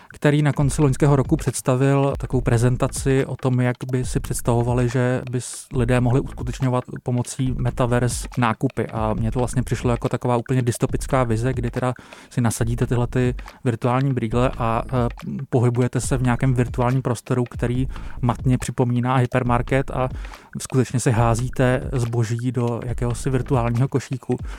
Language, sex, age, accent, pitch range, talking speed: Czech, male, 20-39, native, 120-130 Hz, 145 wpm